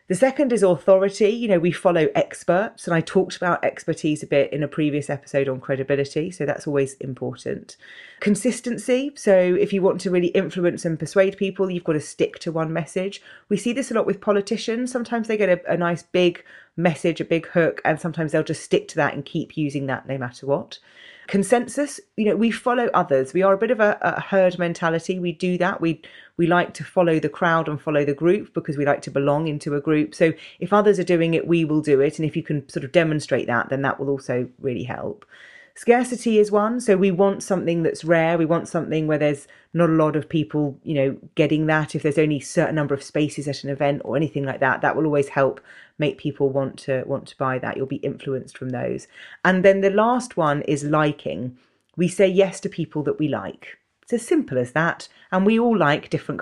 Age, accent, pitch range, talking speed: 30-49, British, 145-195 Hz, 230 wpm